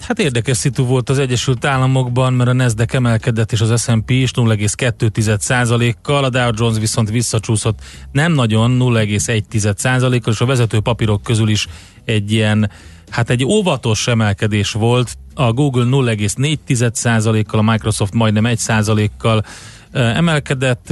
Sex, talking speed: male, 130 wpm